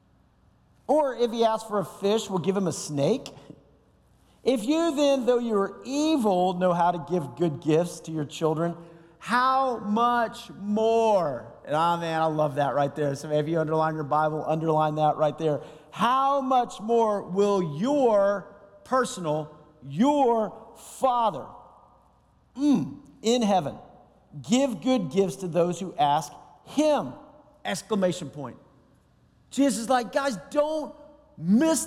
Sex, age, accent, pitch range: male, 50-69, American, 170-255 Hz